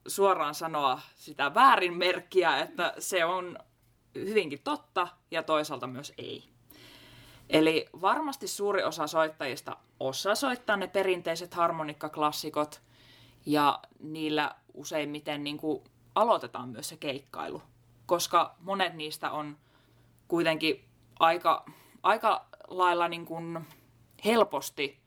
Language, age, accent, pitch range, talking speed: Finnish, 20-39, native, 135-180 Hz, 105 wpm